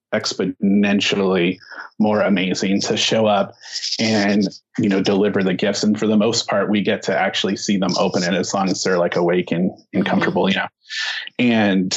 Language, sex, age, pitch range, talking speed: English, male, 30-49, 100-110 Hz, 185 wpm